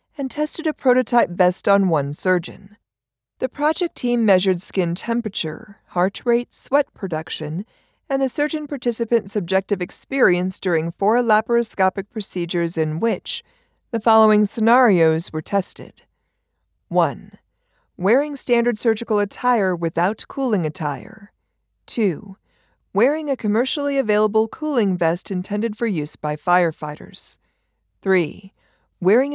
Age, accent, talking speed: 50-69, American, 115 wpm